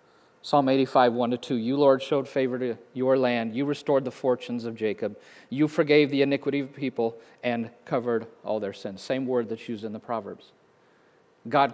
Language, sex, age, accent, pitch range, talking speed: English, male, 50-69, American, 120-145 Hz, 195 wpm